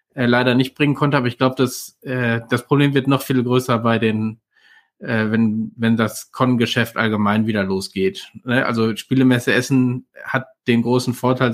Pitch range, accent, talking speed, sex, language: 115-130 Hz, German, 175 wpm, male, German